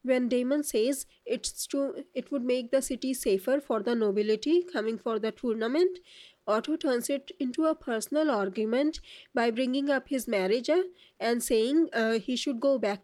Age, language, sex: 20-39, English, female